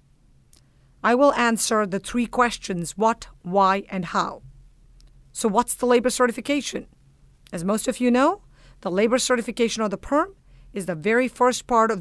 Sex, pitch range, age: female, 195-230 Hz, 50-69